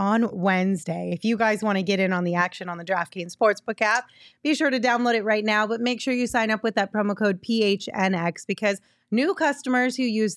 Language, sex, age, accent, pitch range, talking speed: English, female, 30-49, American, 190-230 Hz, 235 wpm